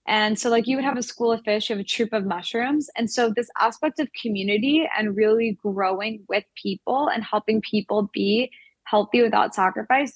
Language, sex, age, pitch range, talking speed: English, female, 10-29, 195-235 Hz, 200 wpm